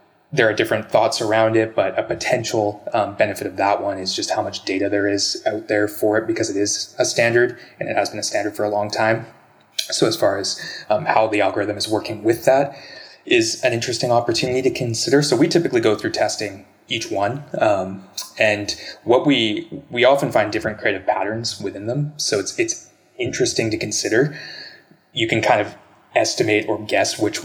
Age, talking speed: 20-39, 200 wpm